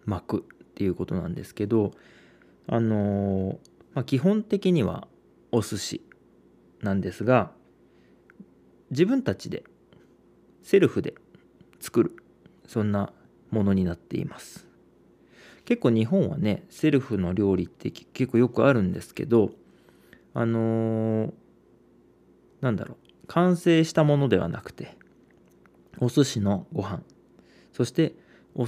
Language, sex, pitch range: Japanese, male, 95-130 Hz